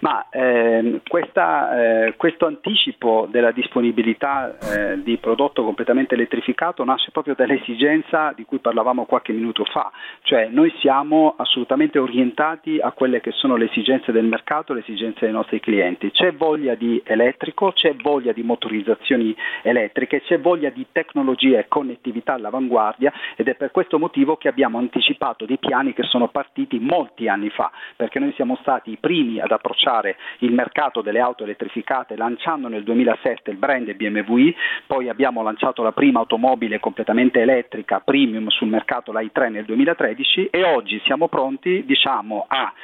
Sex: male